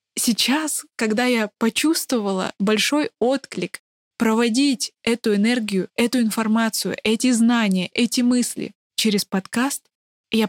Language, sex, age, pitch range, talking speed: Russian, female, 20-39, 200-245 Hz, 105 wpm